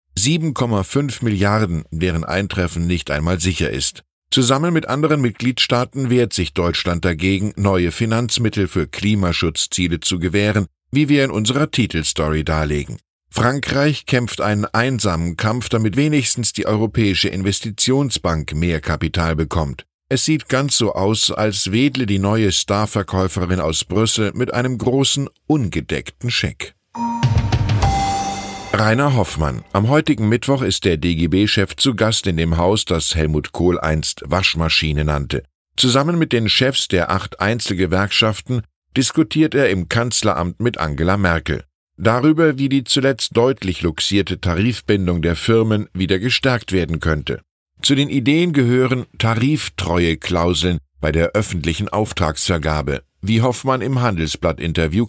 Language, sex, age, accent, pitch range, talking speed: German, male, 10-29, German, 85-125 Hz, 125 wpm